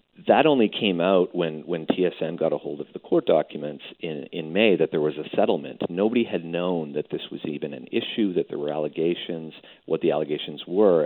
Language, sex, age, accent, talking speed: English, male, 40-59, American, 210 wpm